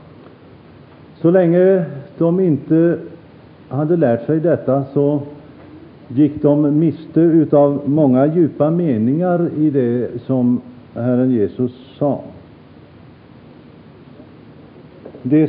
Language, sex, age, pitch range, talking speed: Swedish, male, 50-69, 130-160 Hz, 90 wpm